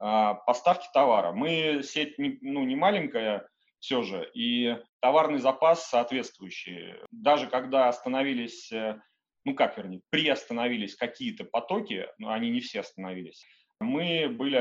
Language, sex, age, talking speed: Russian, male, 30-49, 120 wpm